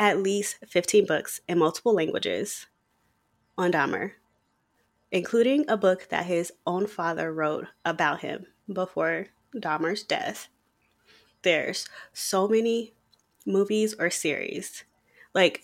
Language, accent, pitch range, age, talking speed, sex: English, American, 165-205 Hz, 20-39, 110 wpm, female